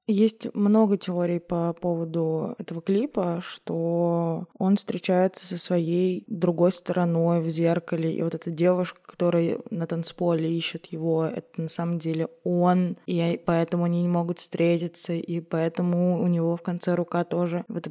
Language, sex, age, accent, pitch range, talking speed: Russian, female, 20-39, native, 175-210 Hz, 150 wpm